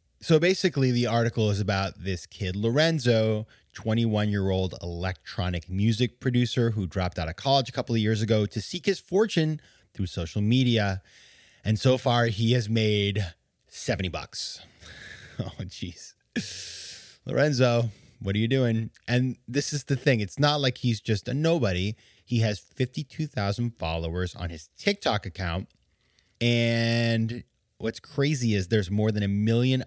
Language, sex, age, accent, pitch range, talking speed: English, male, 30-49, American, 95-125 Hz, 150 wpm